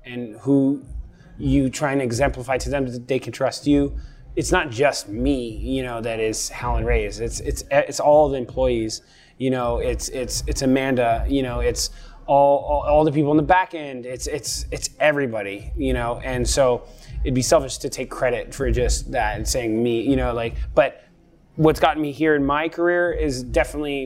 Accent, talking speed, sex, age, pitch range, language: American, 200 wpm, male, 20-39, 125-150 Hz, English